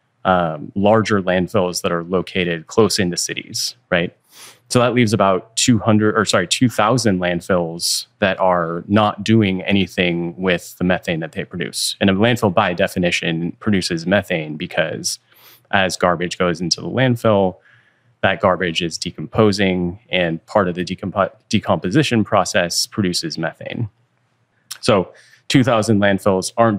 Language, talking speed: English, 135 wpm